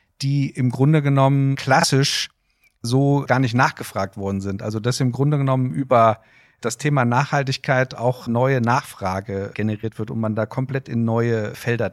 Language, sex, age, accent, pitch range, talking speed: German, male, 50-69, German, 125-165 Hz, 160 wpm